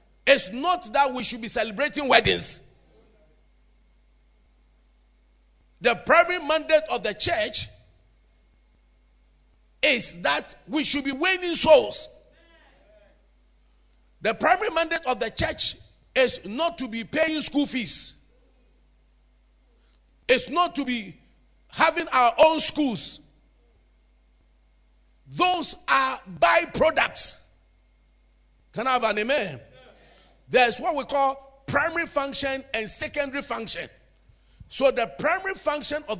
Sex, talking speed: male, 105 wpm